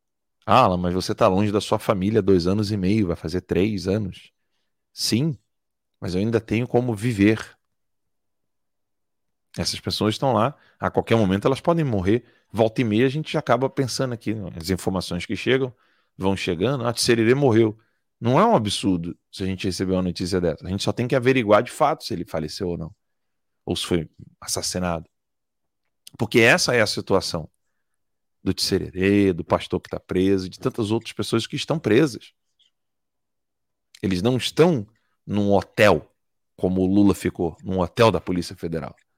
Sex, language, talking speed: male, Portuguese, 175 wpm